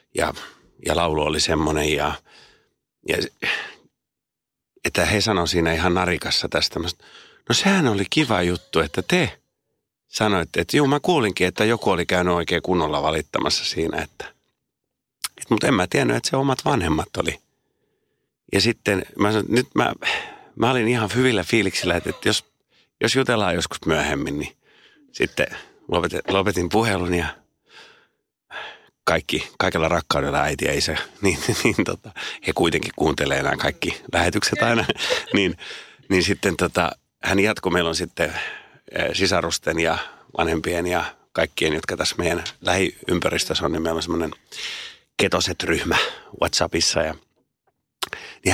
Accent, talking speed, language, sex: native, 140 wpm, Finnish, male